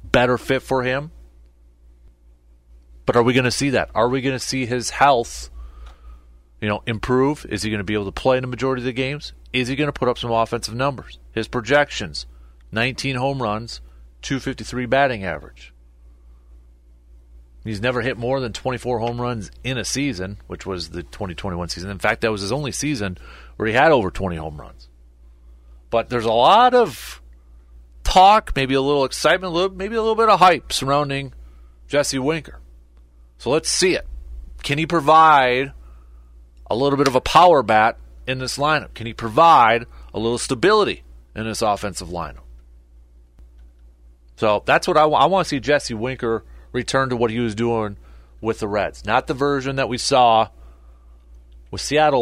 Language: English